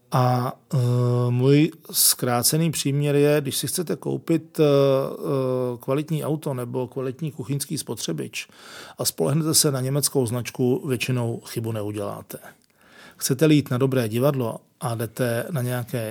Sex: male